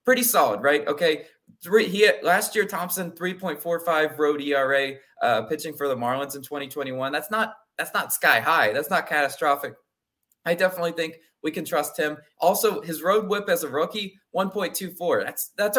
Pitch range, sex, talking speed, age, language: 140-190 Hz, male, 205 wpm, 20-39, English